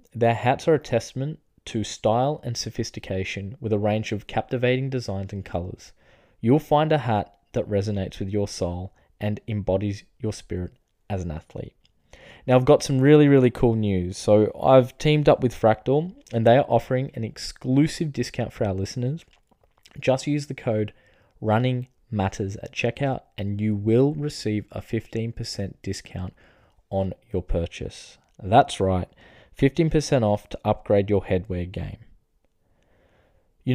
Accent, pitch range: Australian, 100-125 Hz